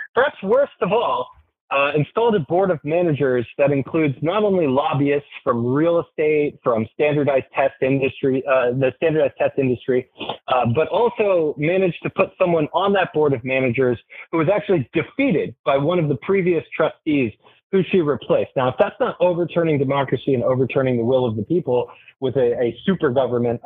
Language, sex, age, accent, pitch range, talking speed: English, male, 20-39, American, 130-170 Hz, 180 wpm